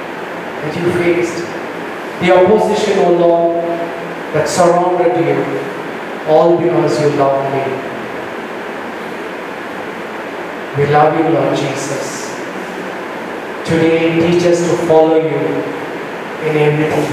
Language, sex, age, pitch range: Japanese, male, 40-59, 155-175 Hz